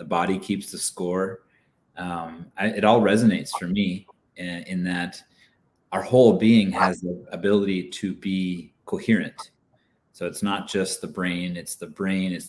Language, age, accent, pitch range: English, 30-49, American, 90-110 Hz